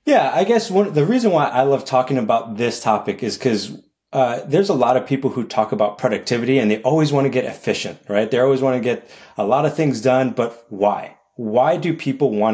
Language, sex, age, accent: English, male, 30-49, American